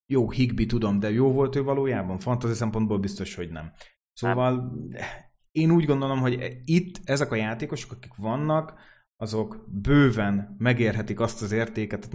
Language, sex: Hungarian, male